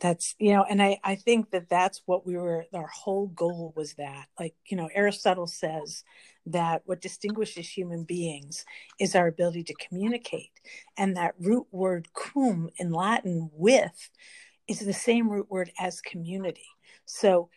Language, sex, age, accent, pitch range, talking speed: English, female, 50-69, American, 170-200 Hz, 165 wpm